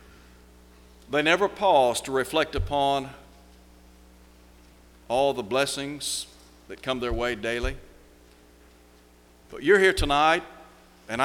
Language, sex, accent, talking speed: English, male, American, 100 wpm